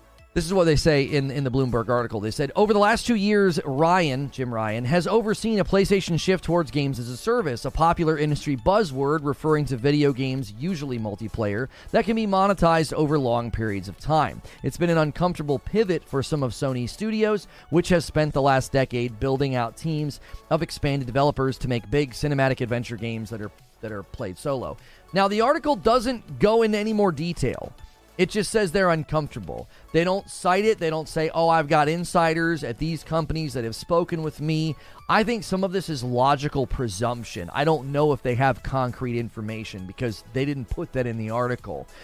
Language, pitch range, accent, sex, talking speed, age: English, 125-175 Hz, American, male, 200 wpm, 30-49